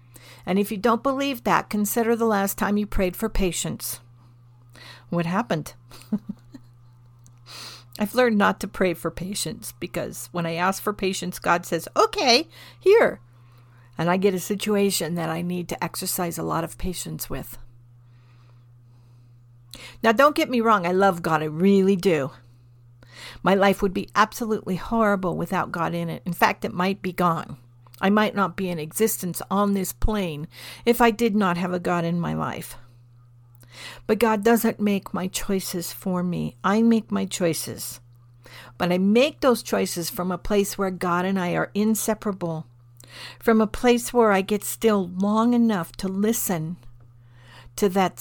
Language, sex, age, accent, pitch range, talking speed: English, female, 50-69, American, 125-205 Hz, 165 wpm